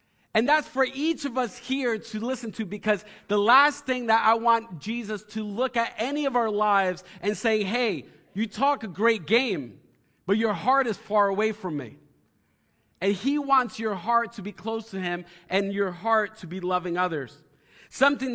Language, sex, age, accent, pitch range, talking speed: English, male, 40-59, American, 190-235 Hz, 195 wpm